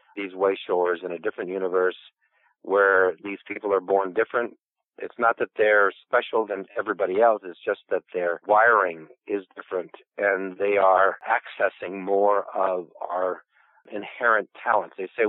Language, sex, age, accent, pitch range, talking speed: English, male, 50-69, American, 95-110 Hz, 150 wpm